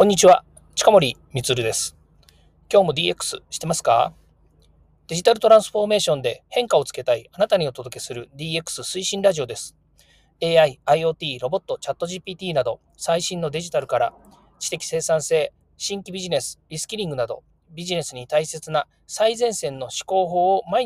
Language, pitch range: Japanese, 125-190 Hz